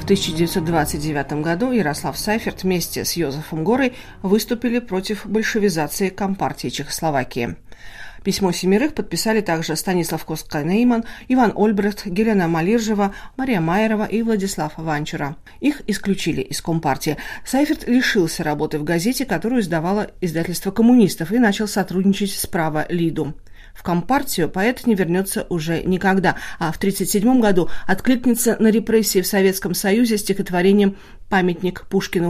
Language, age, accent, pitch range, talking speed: Russian, 40-59, native, 165-225 Hz, 130 wpm